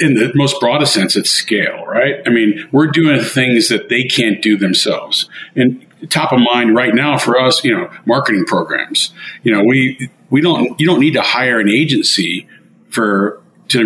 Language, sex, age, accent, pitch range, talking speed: English, male, 40-59, American, 105-130 Hz, 190 wpm